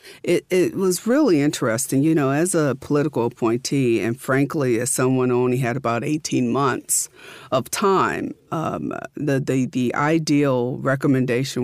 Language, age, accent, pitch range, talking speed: English, 50-69, American, 125-150 Hz, 150 wpm